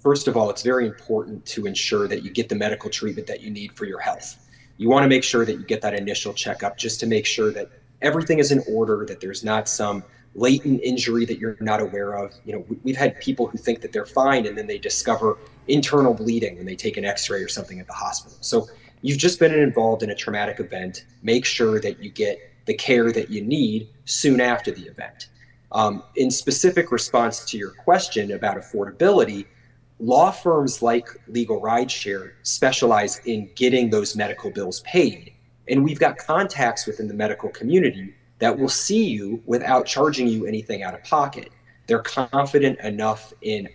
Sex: male